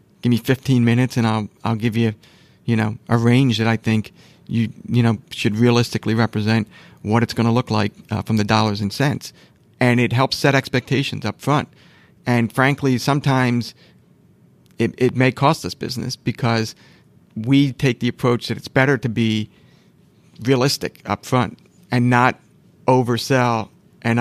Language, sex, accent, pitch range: English, male, American, 110-125 Hz